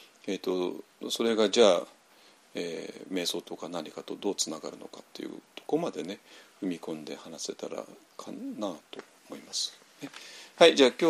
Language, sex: Japanese, male